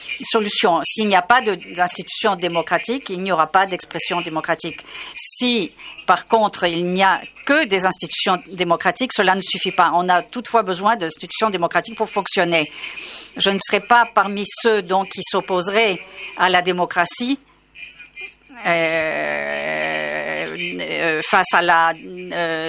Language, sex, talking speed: French, female, 140 wpm